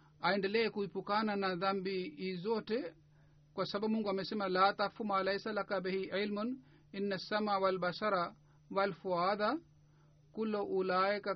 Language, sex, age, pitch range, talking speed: Swahili, male, 50-69, 180-220 Hz, 125 wpm